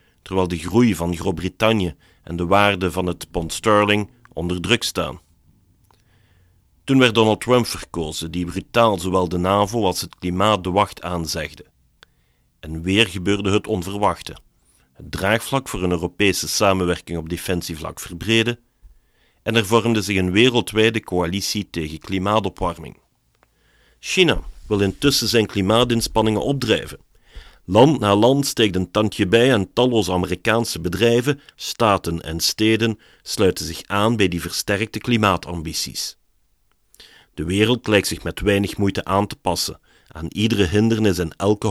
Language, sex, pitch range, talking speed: Dutch, male, 90-115 Hz, 140 wpm